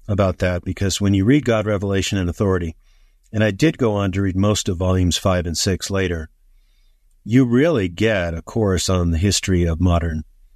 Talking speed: 195 wpm